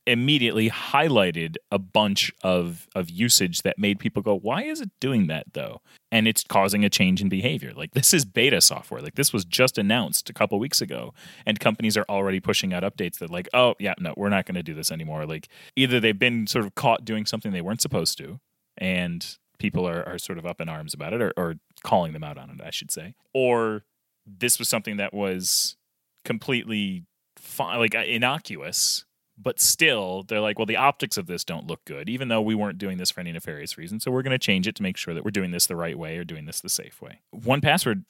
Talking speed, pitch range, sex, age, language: 230 wpm, 95-120 Hz, male, 30-49, English